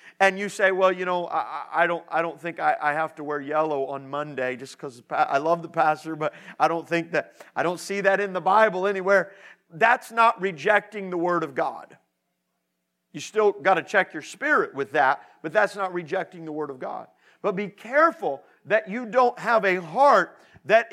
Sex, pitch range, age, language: male, 165-205 Hz, 50-69, English